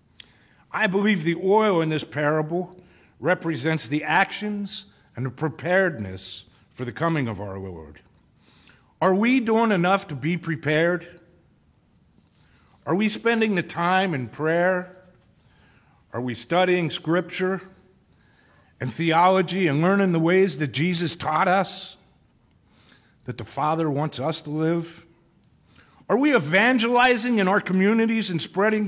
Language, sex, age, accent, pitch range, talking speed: English, male, 50-69, American, 150-200 Hz, 130 wpm